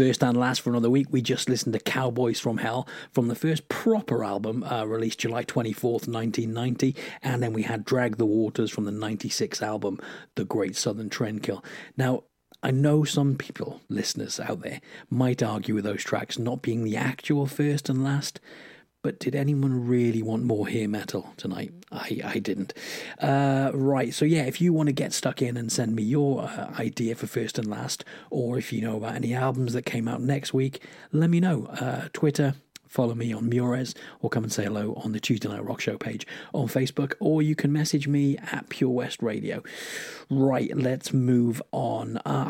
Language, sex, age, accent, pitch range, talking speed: English, male, 40-59, British, 115-140 Hz, 200 wpm